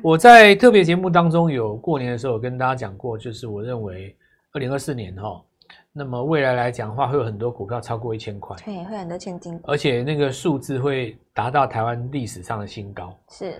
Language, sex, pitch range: Chinese, male, 115-165 Hz